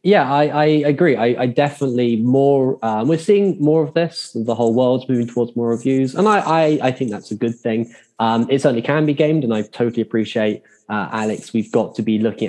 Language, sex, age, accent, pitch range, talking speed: English, male, 10-29, British, 115-145 Hz, 225 wpm